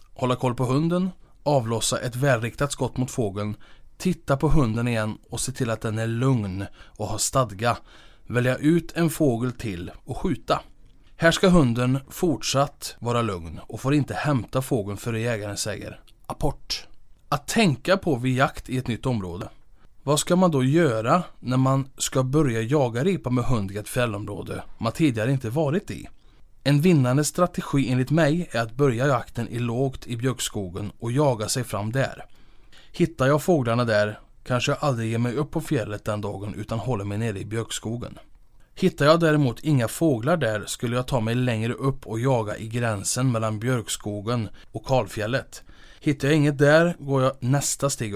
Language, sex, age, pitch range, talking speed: Swedish, male, 20-39, 110-145 Hz, 175 wpm